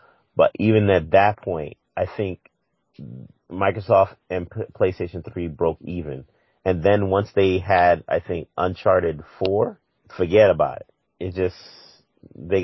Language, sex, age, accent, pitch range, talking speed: English, male, 30-49, American, 85-100 Hz, 135 wpm